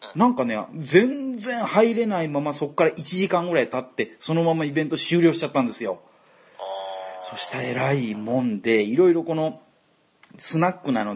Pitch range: 125-195 Hz